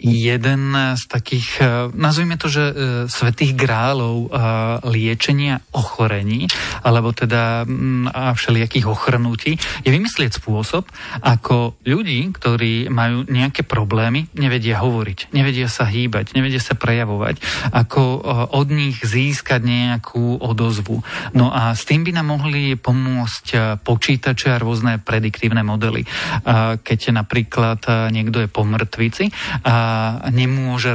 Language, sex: Slovak, male